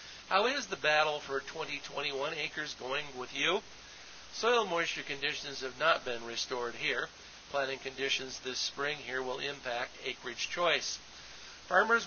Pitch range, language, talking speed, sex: 125-155 Hz, English, 140 wpm, male